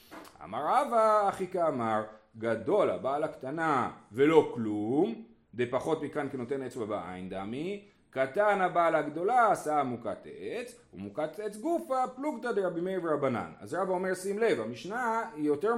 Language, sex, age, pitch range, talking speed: Hebrew, male, 30-49, 150-205 Hz, 145 wpm